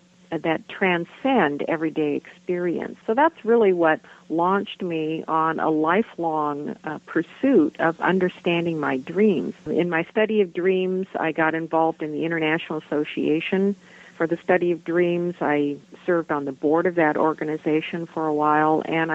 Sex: female